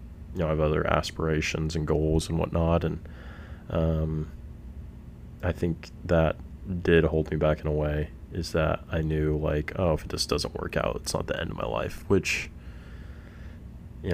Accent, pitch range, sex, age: American, 75-85 Hz, male, 20-39